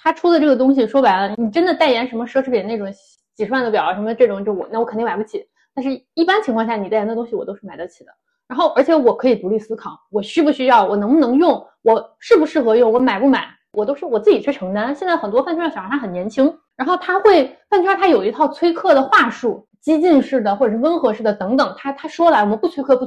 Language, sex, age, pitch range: Chinese, female, 20-39, 215-290 Hz